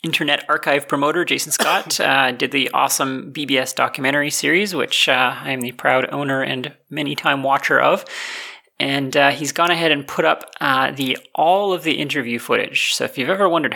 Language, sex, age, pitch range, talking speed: English, male, 30-49, 130-150 Hz, 190 wpm